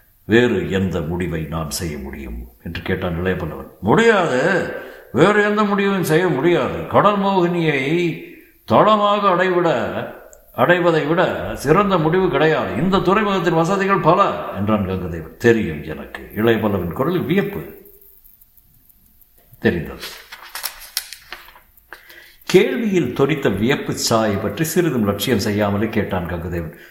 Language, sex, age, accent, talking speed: Tamil, male, 60-79, native, 105 wpm